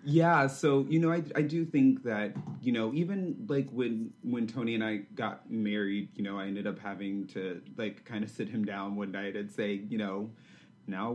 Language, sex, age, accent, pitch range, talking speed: English, male, 30-49, American, 95-125 Hz, 215 wpm